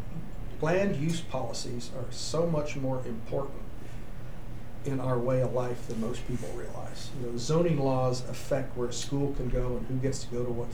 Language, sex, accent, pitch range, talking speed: English, male, American, 120-130 Hz, 190 wpm